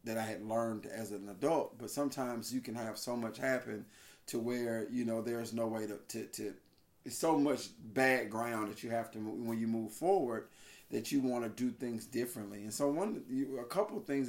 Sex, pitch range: male, 115-135 Hz